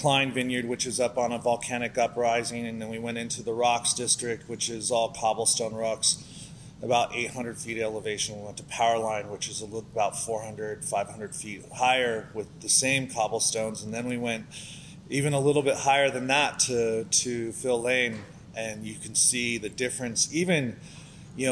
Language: English